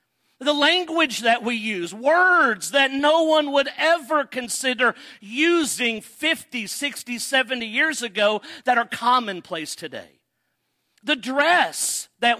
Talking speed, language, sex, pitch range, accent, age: 120 wpm, English, male, 220-290 Hz, American, 50-69